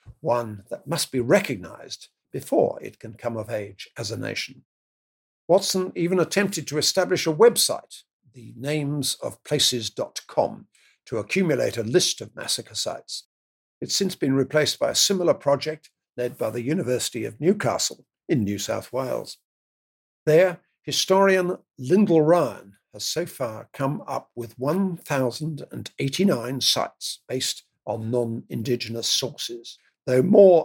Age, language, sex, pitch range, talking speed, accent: 50-69, English, male, 115-170 Hz, 130 wpm, British